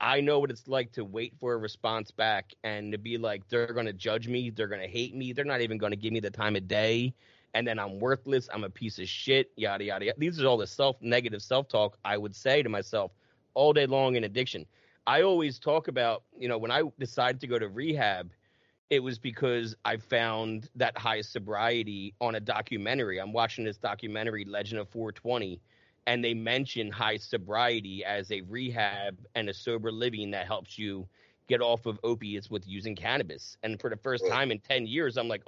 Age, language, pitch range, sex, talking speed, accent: 30-49, English, 105-125 Hz, male, 215 wpm, American